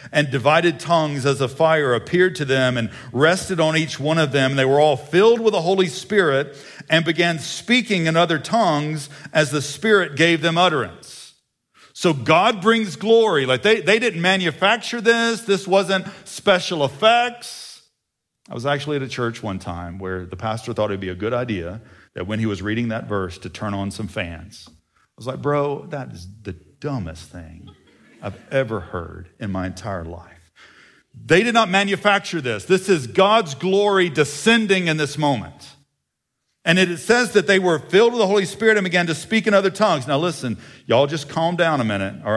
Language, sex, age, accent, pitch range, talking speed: English, male, 50-69, American, 110-180 Hz, 190 wpm